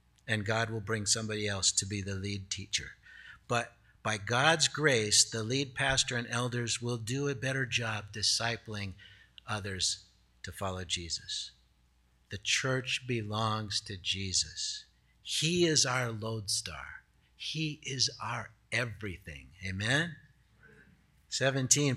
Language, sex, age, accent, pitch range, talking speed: English, male, 60-79, American, 105-145 Hz, 125 wpm